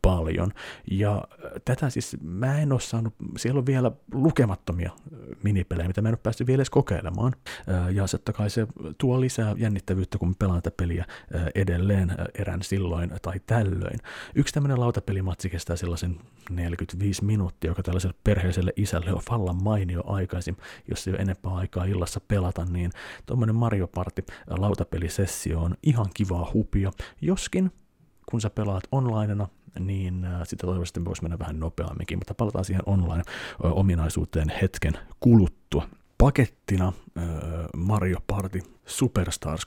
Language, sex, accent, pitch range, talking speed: Finnish, male, native, 90-105 Hz, 140 wpm